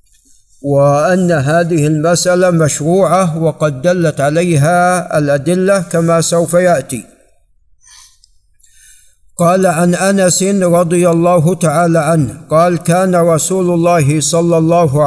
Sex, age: male, 50-69